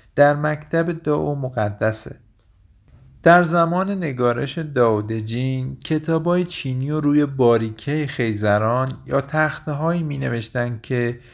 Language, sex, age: Persian, male, 50-69